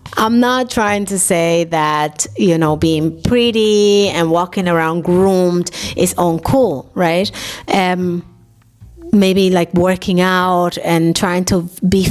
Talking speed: 130 wpm